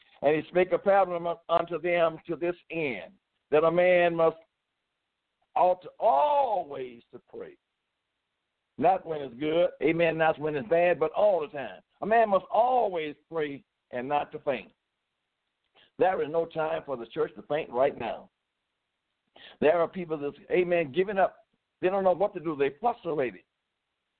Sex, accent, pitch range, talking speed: male, American, 160-225 Hz, 160 wpm